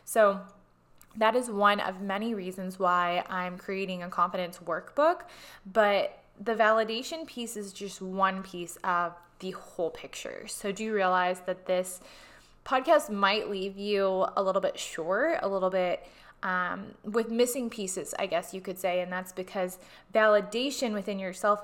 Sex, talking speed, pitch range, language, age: female, 160 wpm, 185-220 Hz, English, 20-39